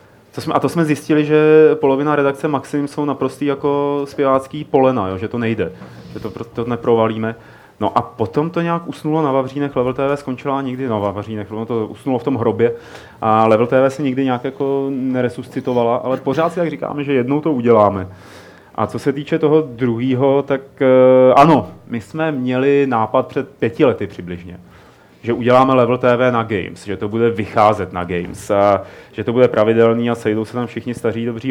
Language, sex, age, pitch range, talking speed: Czech, male, 30-49, 110-135 Hz, 185 wpm